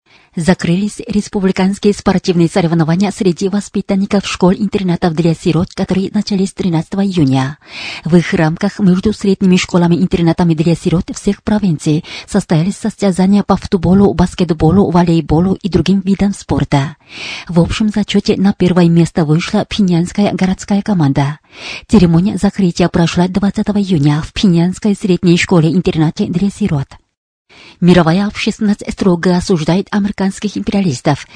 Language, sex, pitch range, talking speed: Russian, female, 170-200 Hz, 115 wpm